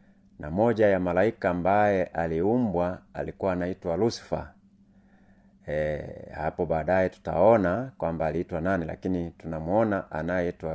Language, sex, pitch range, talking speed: Swahili, male, 90-115 Hz, 105 wpm